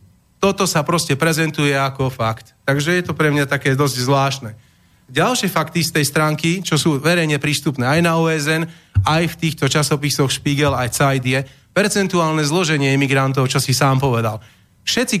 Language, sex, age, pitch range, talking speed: Slovak, male, 30-49, 140-175 Hz, 160 wpm